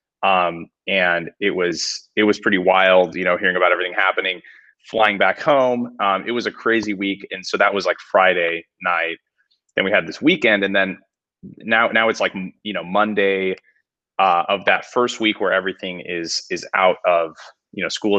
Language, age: English, 20-39